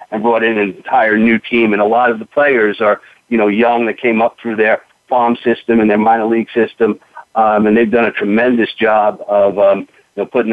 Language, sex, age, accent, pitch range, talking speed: English, male, 50-69, American, 105-120 Hz, 235 wpm